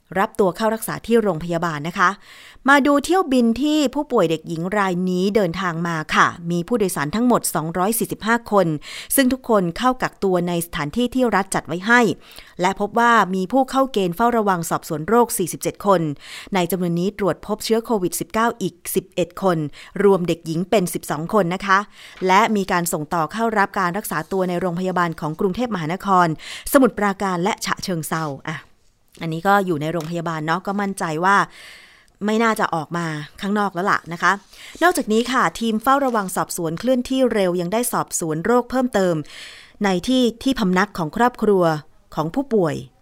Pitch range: 170-225 Hz